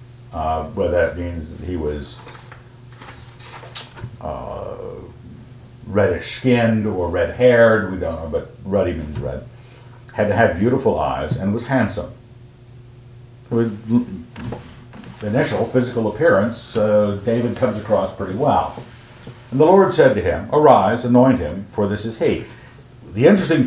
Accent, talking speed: American, 130 wpm